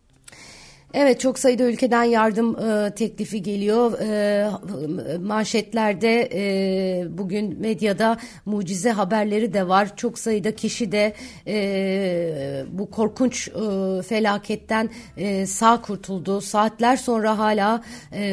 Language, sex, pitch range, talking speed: Turkish, female, 195-220 Hz, 110 wpm